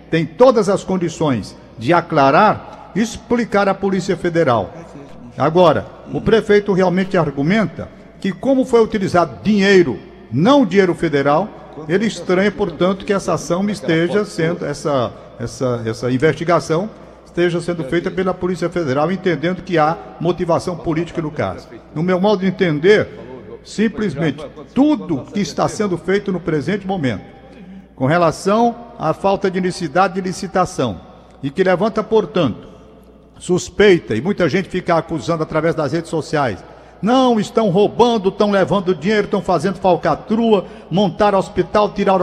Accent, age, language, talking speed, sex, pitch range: Brazilian, 60-79, Portuguese, 140 wpm, male, 165-210 Hz